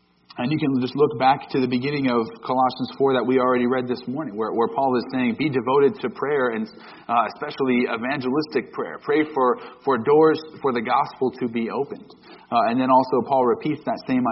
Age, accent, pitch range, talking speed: 40-59, American, 120-150 Hz, 210 wpm